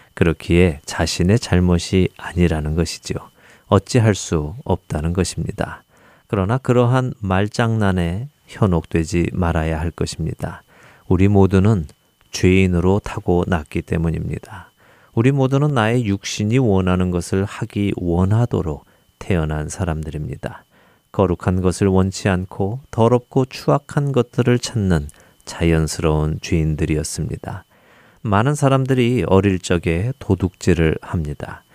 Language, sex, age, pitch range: Korean, male, 40-59, 85-115 Hz